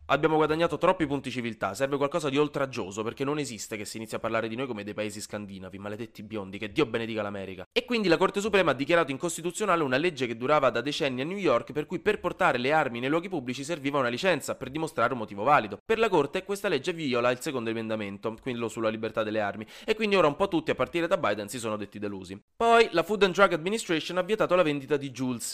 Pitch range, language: 115-170 Hz, Italian